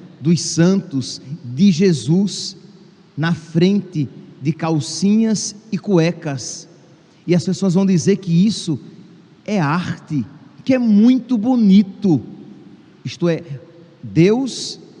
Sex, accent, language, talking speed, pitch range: male, Brazilian, Portuguese, 105 wpm, 160-195 Hz